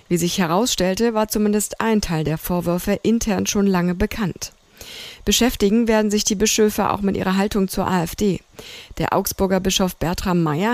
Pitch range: 185-215 Hz